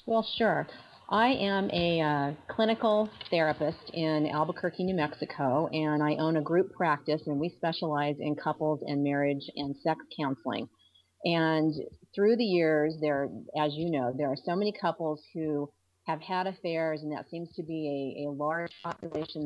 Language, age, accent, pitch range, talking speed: English, 40-59, American, 150-180 Hz, 165 wpm